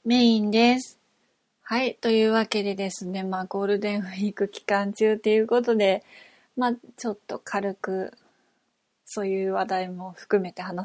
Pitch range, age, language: 190-235 Hz, 20-39, Japanese